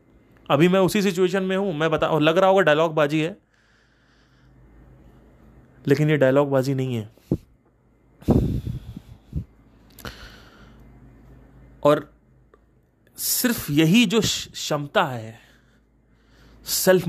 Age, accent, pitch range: 30-49, native, 125-170 Hz